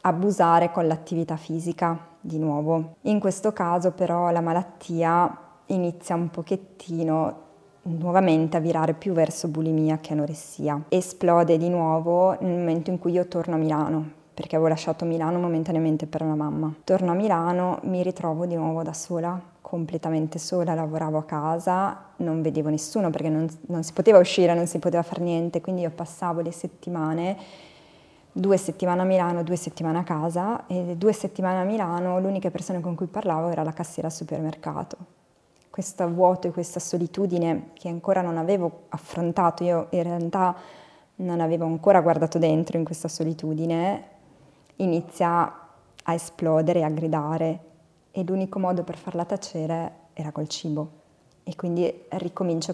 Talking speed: 155 wpm